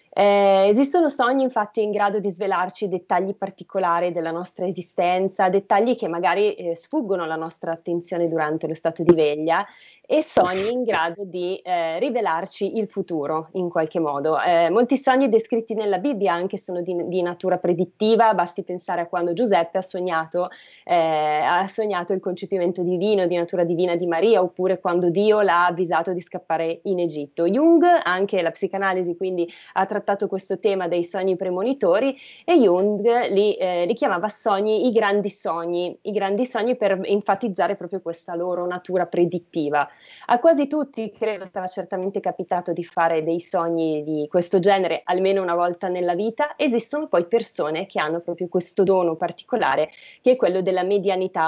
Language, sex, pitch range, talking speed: Italian, female, 175-210 Hz, 165 wpm